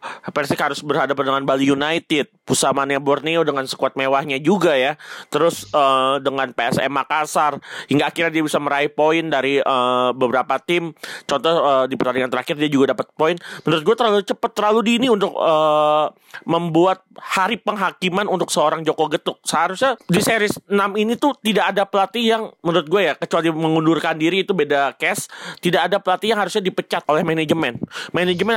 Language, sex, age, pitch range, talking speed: Indonesian, male, 30-49, 150-195 Hz, 170 wpm